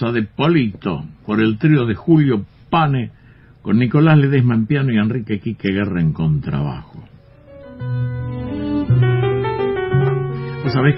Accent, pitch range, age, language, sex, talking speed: Argentinian, 105-140 Hz, 60-79, Spanish, male, 115 wpm